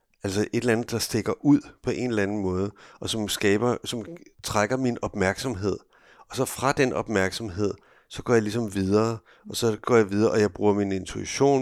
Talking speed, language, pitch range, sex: 200 wpm, Danish, 100-130 Hz, male